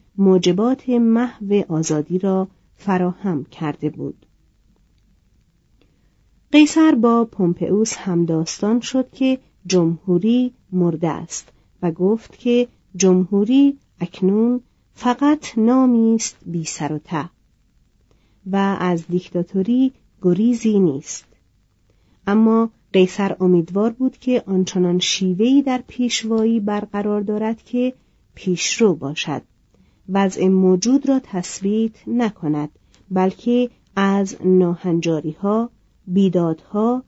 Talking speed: 90 wpm